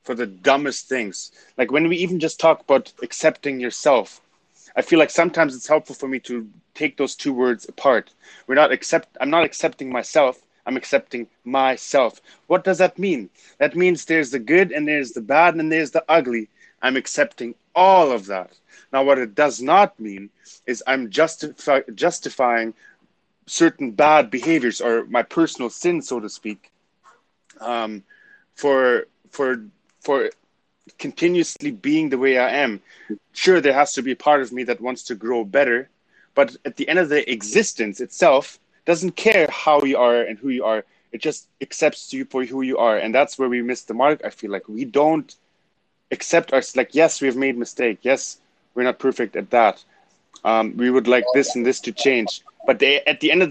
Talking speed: 190 wpm